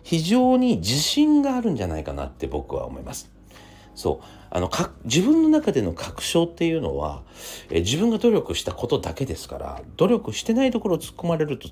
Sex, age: male, 40-59